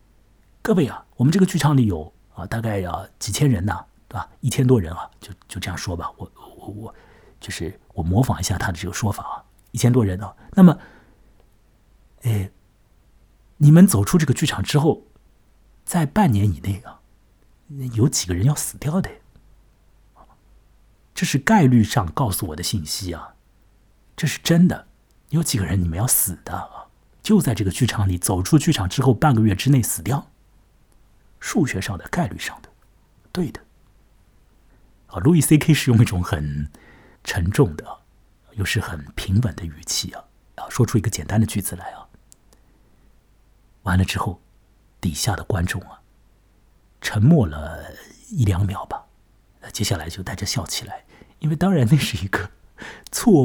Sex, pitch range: male, 95-135 Hz